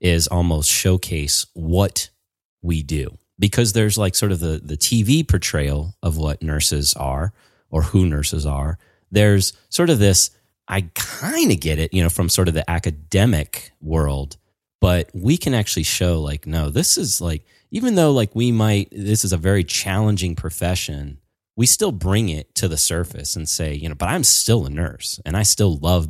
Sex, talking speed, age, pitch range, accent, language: male, 185 wpm, 30-49, 75-100 Hz, American, English